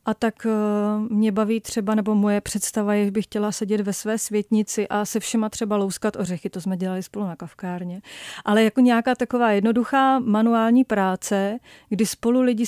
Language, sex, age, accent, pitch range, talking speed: Czech, female, 40-59, native, 200-230 Hz, 180 wpm